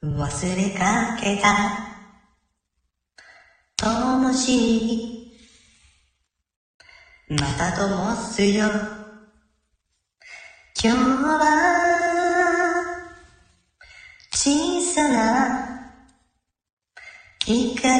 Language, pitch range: Japanese, 205-320 Hz